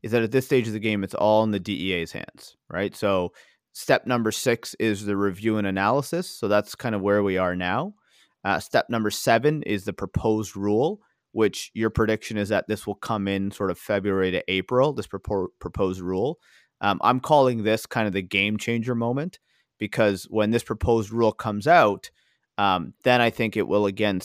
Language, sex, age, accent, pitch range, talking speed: English, male, 30-49, American, 100-120 Hz, 200 wpm